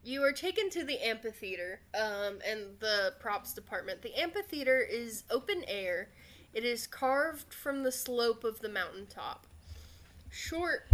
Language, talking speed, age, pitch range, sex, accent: English, 145 wpm, 10-29, 200-255 Hz, female, American